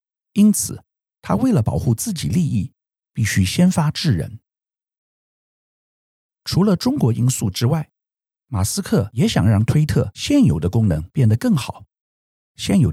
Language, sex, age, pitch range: Chinese, male, 50-69, 100-155 Hz